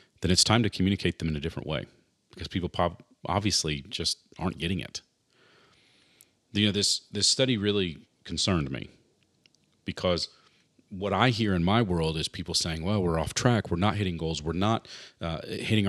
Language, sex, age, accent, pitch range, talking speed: English, male, 40-59, American, 85-105 Hz, 180 wpm